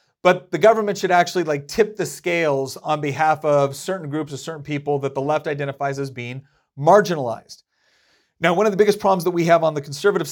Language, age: English, 40-59